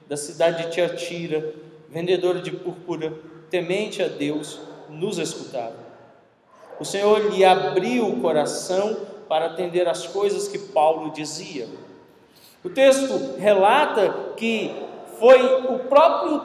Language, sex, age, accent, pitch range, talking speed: Portuguese, male, 40-59, Brazilian, 185-265 Hz, 115 wpm